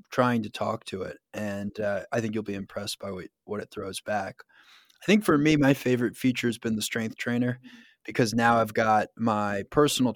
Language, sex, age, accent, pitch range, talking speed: English, male, 20-39, American, 110-130 Hz, 205 wpm